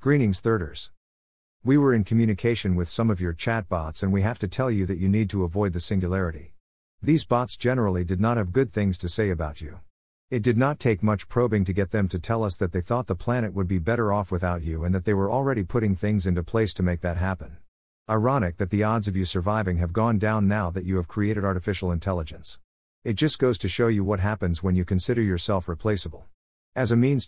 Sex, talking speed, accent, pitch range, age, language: male, 230 wpm, American, 90-115 Hz, 50-69, English